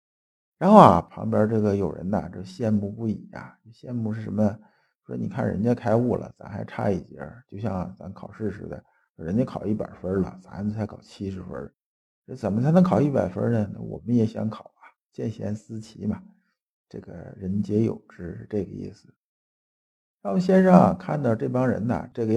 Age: 50-69